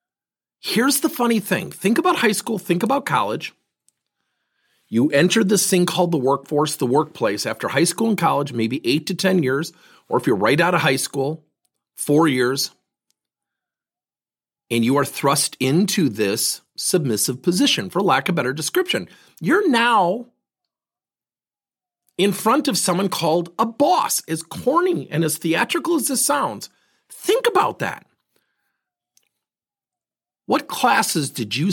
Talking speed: 150 wpm